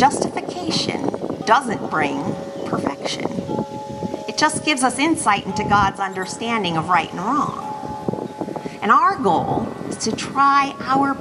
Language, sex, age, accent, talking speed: English, female, 40-59, American, 125 wpm